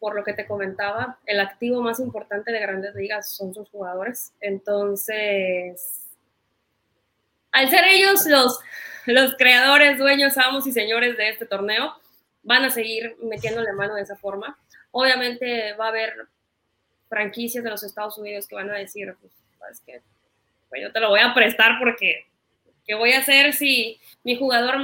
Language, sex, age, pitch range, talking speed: Spanish, female, 20-39, 210-255 Hz, 160 wpm